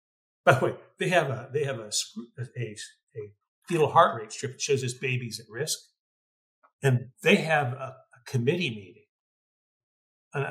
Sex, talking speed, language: male, 165 wpm, English